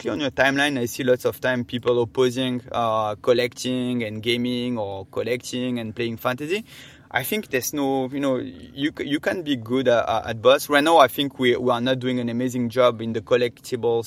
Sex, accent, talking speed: male, French, 205 wpm